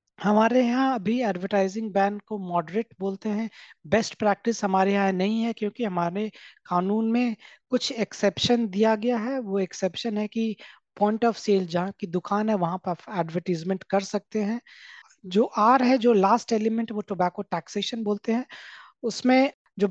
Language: Hindi